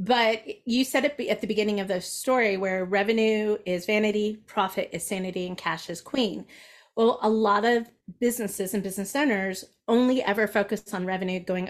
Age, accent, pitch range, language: 30-49, American, 195-260 Hz, English